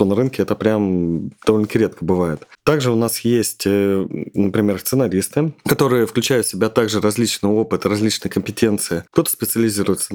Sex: male